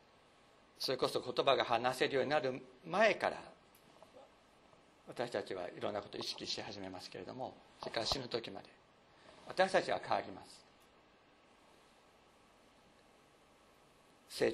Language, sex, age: Japanese, male, 50-69